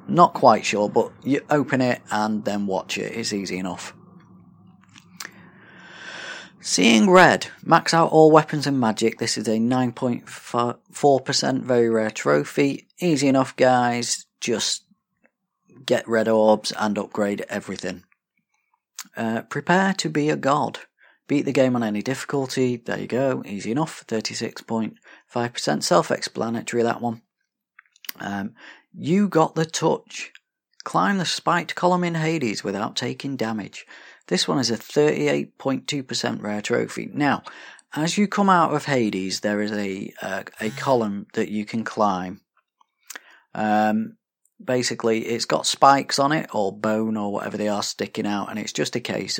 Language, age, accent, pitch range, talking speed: English, 40-59, British, 105-145 Hz, 145 wpm